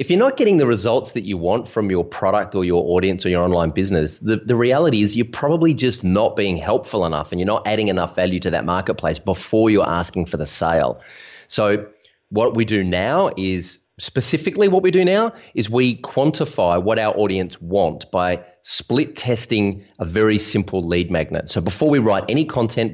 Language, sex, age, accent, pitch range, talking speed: English, male, 30-49, Australian, 90-115 Hz, 200 wpm